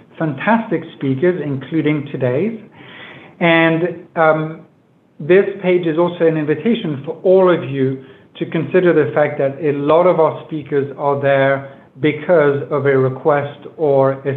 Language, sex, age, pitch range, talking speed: English, male, 60-79, 140-175 Hz, 140 wpm